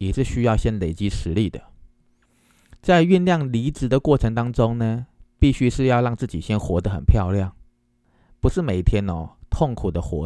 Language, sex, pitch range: Chinese, male, 95-130 Hz